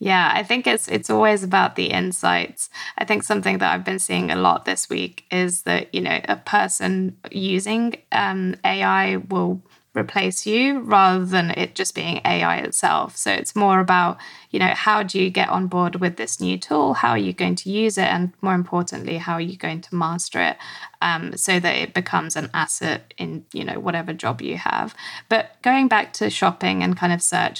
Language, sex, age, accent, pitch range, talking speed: English, female, 10-29, British, 115-190 Hz, 205 wpm